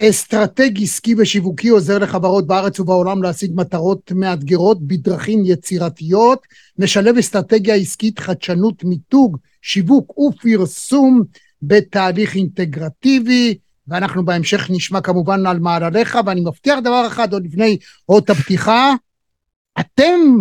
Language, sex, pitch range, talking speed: Hebrew, male, 185-240 Hz, 105 wpm